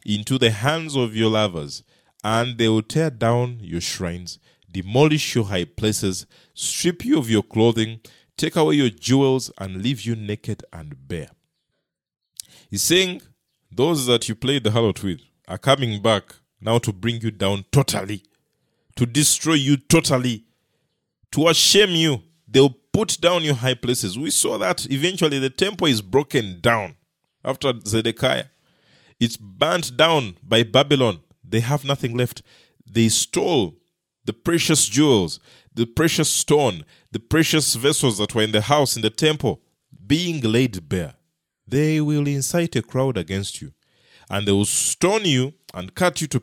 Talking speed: 155 wpm